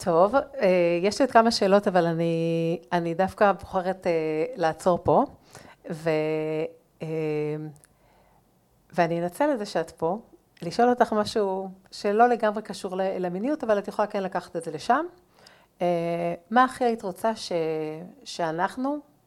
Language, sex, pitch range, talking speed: Hebrew, female, 165-205 Hz, 125 wpm